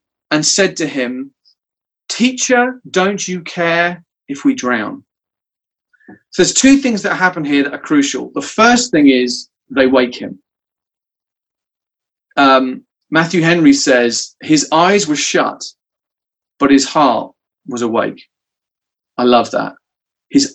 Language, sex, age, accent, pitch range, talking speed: English, male, 30-49, British, 150-225 Hz, 130 wpm